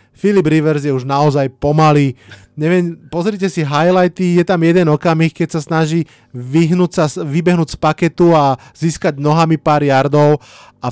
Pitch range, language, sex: 130-160 Hz, Slovak, male